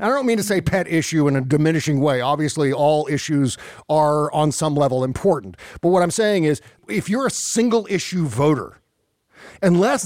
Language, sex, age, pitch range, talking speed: English, male, 50-69, 150-195 Hz, 185 wpm